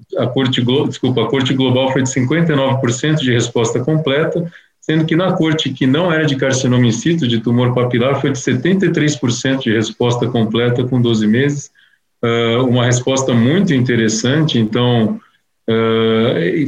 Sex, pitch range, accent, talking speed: male, 125-150 Hz, Brazilian, 160 wpm